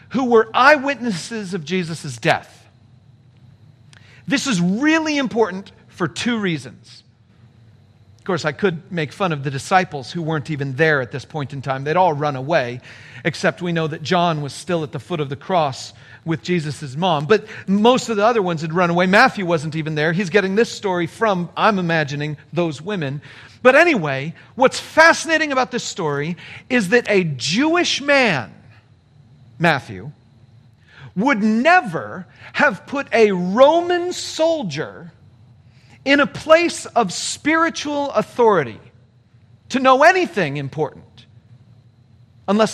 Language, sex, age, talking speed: English, male, 40-59, 145 wpm